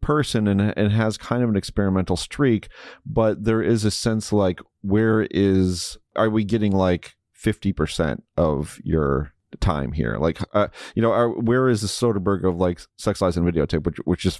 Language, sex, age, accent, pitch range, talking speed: English, male, 30-49, American, 90-110 Hz, 185 wpm